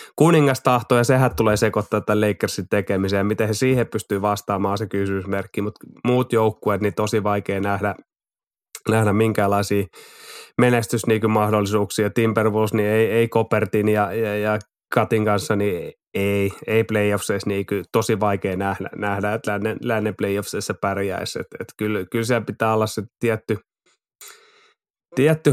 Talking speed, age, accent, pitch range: 140 wpm, 20-39, native, 100-115 Hz